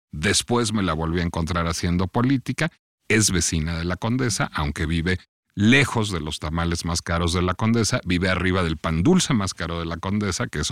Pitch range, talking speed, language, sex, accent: 90-125 Hz, 200 wpm, Spanish, male, Mexican